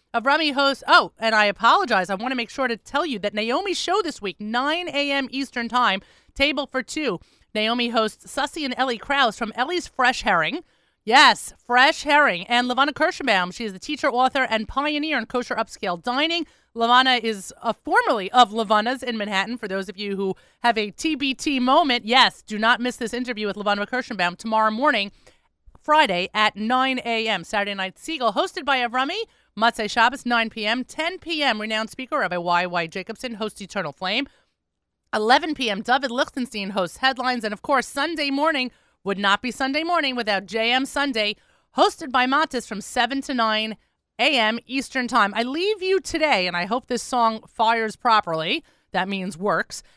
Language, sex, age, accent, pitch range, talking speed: English, female, 30-49, American, 215-275 Hz, 180 wpm